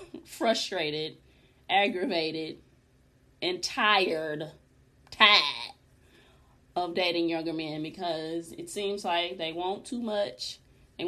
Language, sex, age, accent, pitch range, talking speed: English, female, 20-39, American, 165-245 Hz, 95 wpm